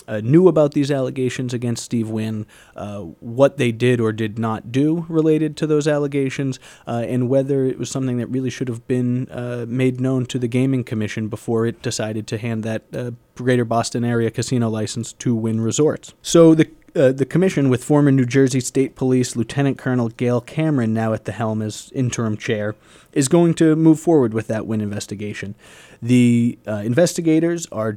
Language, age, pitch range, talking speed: English, 30-49, 115-150 Hz, 190 wpm